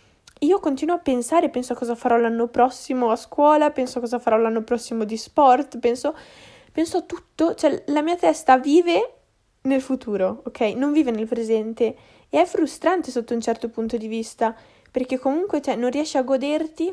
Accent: native